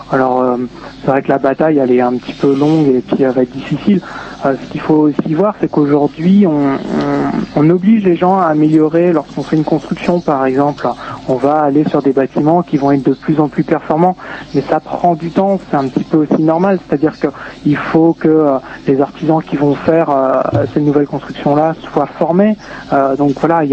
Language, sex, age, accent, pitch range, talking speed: French, male, 40-59, French, 140-165 Hz, 225 wpm